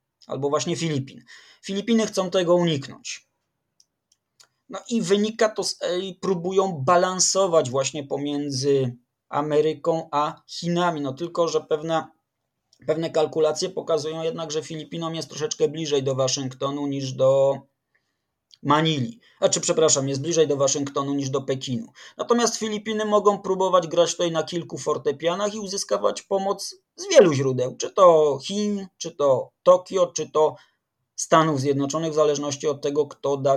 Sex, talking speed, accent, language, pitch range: male, 140 wpm, native, Polish, 140-180 Hz